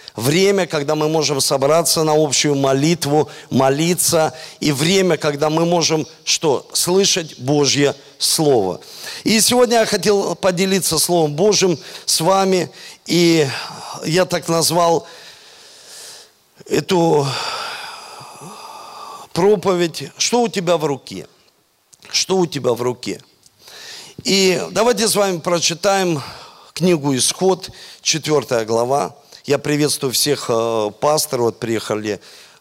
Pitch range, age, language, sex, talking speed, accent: 130-175 Hz, 50-69, Russian, male, 105 wpm, native